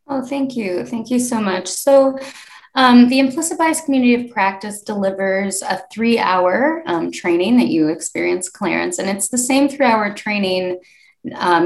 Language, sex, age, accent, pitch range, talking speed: English, female, 20-39, American, 165-215 Hz, 170 wpm